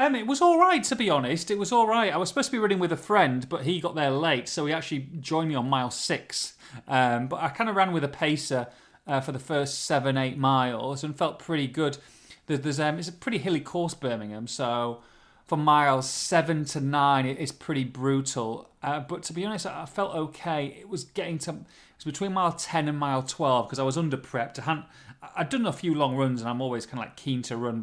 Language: English